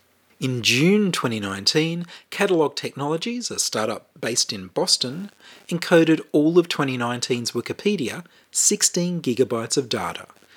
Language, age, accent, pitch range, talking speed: English, 30-49, Australian, 120-180 Hz, 110 wpm